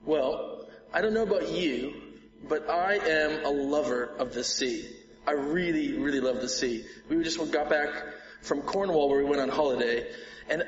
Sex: male